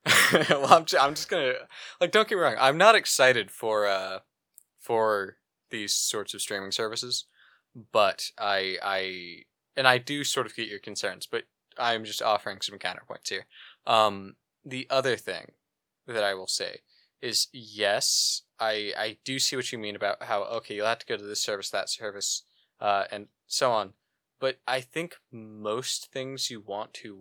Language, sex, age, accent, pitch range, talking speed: English, male, 20-39, American, 100-130 Hz, 175 wpm